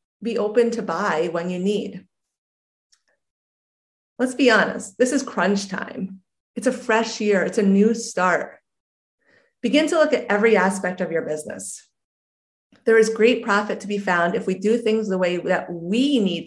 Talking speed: 170 wpm